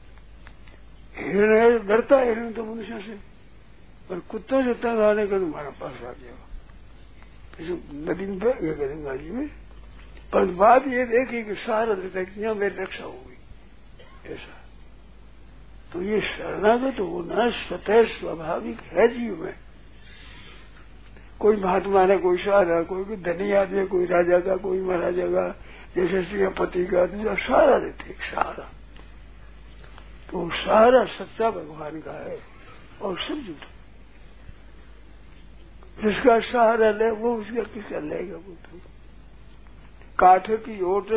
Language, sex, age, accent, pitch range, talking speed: Hindi, male, 60-79, native, 190-225 Hz, 110 wpm